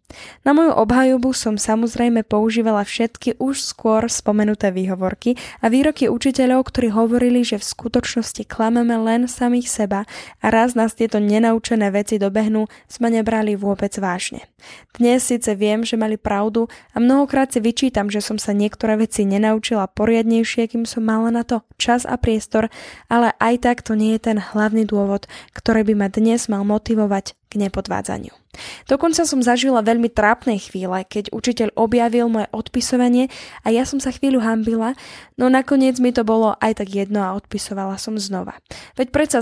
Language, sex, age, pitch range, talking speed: Slovak, female, 10-29, 215-240 Hz, 165 wpm